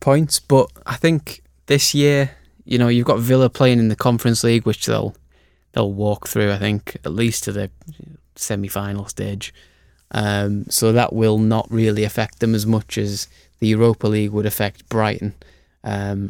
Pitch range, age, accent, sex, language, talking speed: 105-120 Hz, 20-39, British, male, English, 175 wpm